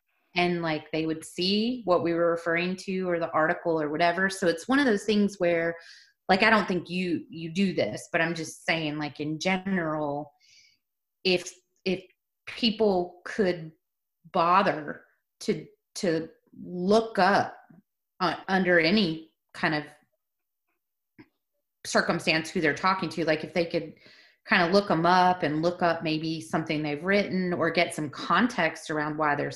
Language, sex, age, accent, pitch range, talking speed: English, female, 30-49, American, 160-190 Hz, 160 wpm